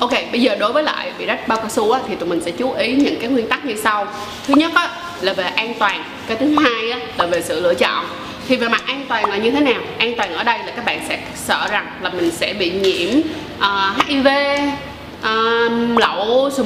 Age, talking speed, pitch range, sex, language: 20-39, 250 wpm, 215-280 Hz, female, Vietnamese